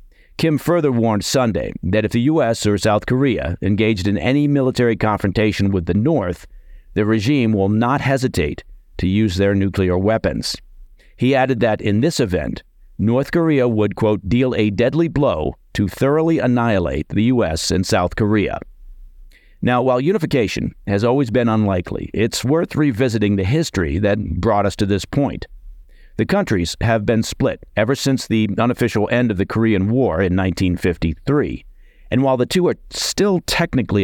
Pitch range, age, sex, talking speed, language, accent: 95-125 Hz, 50-69, male, 160 wpm, English, American